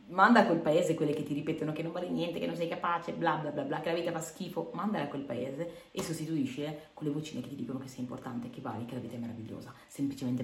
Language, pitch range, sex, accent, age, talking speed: Italian, 140-180 Hz, female, native, 30-49, 265 wpm